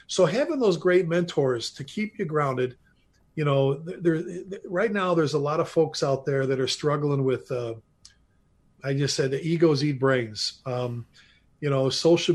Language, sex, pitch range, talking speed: English, male, 135-175 Hz, 180 wpm